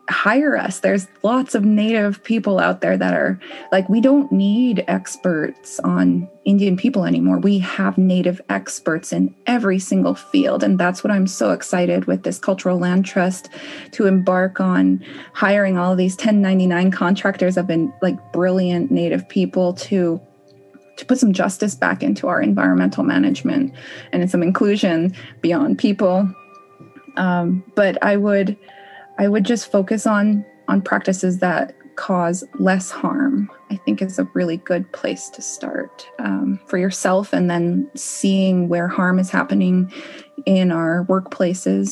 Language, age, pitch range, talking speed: English, 20-39, 175-215 Hz, 150 wpm